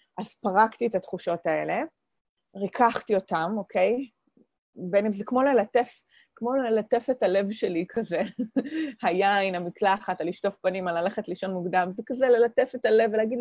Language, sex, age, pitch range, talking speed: English, female, 30-49, 190-245 Hz, 150 wpm